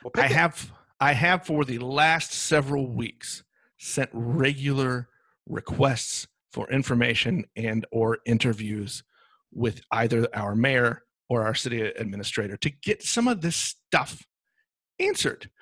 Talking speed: 125 wpm